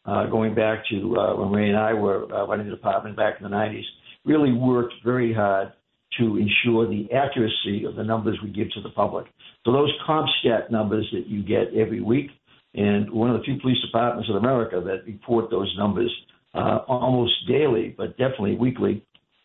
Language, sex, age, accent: English, male, 60-79, American